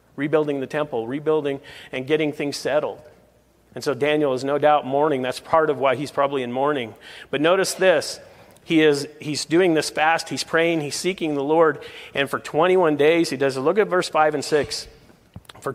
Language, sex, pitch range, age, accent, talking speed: English, male, 140-185 Hz, 40-59, American, 200 wpm